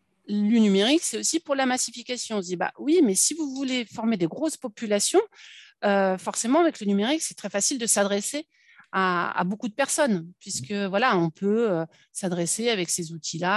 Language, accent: French, French